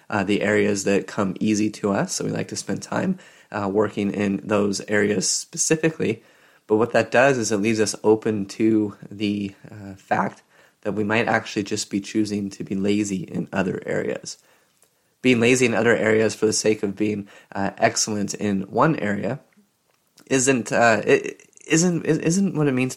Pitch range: 100-115 Hz